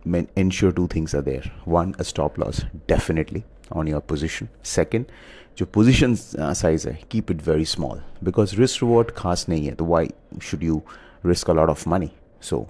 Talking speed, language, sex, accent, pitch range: 185 wpm, English, male, Indian, 80-95 Hz